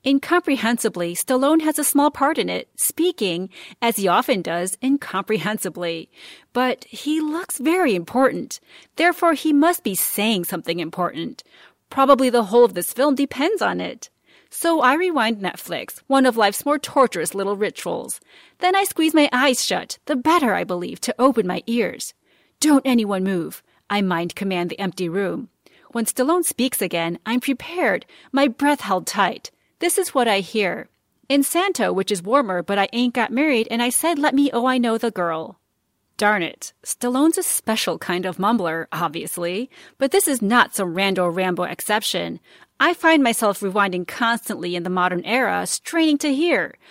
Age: 30-49